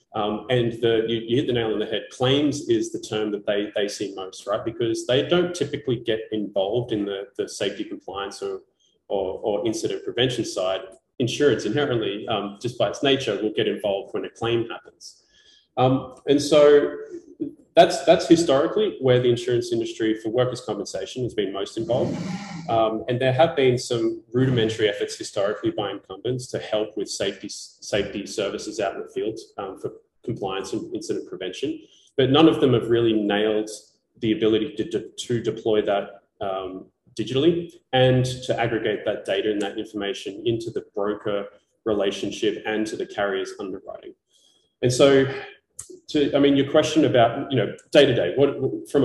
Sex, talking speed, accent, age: male, 175 wpm, Australian, 20-39